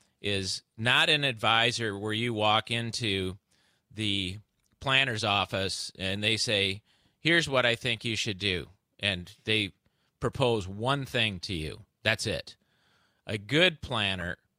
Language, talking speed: English, 135 wpm